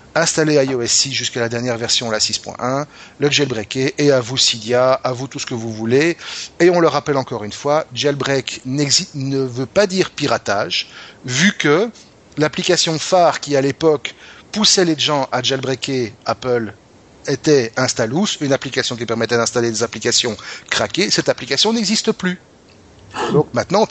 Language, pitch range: French, 120-145 Hz